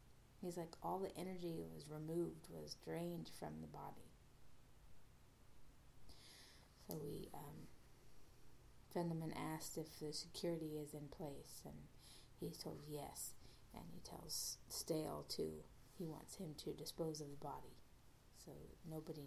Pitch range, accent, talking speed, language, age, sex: 120-170 Hz, American, 130 wpm, English, 30-49, female